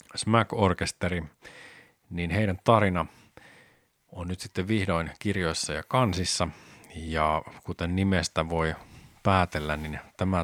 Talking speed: 110 wpm